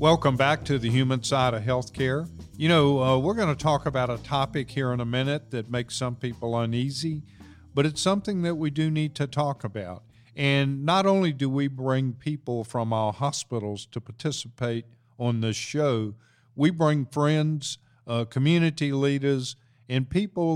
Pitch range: 115-140 Hz